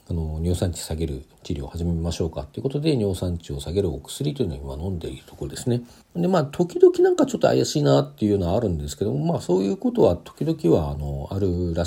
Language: Japanese